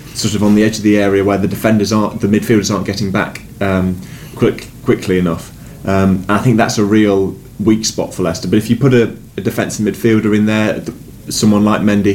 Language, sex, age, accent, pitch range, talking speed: English, male, 20-39, British, 95-115 Hz, 225 wpm